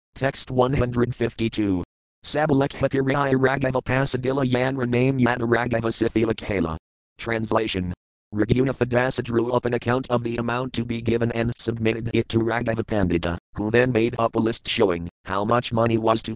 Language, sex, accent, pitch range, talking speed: English, male, American, 110-125 Hz, 145 wpm